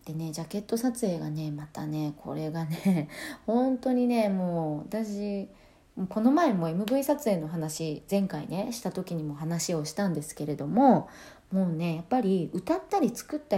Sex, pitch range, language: female, 160-220 Hz, Japanese